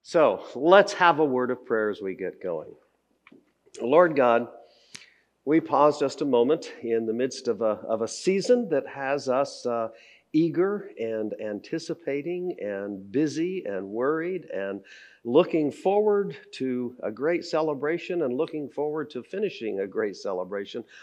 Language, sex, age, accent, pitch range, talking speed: English, male, 50-69, American, 105-155 Hz, 145 wpm